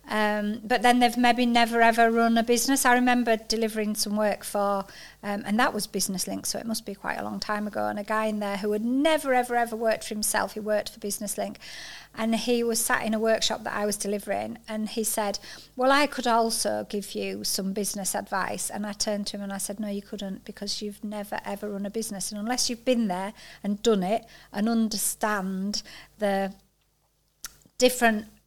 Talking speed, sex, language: 215 wpm, female, English